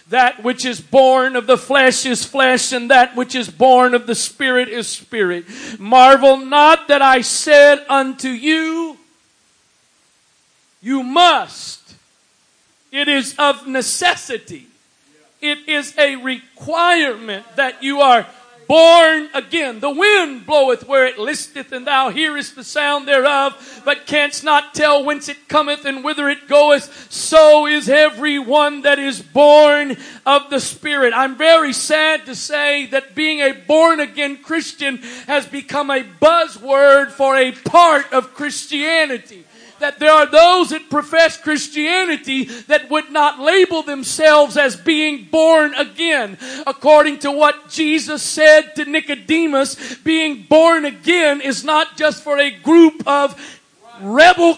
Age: 40-59